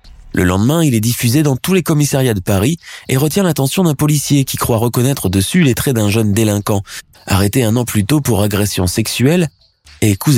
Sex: male